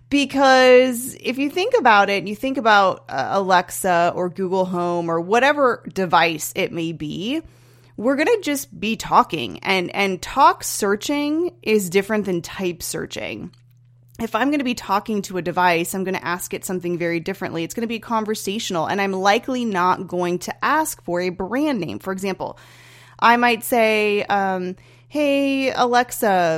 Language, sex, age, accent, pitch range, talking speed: English, female, 30-49, American, 175-225 Hz, 170 wpm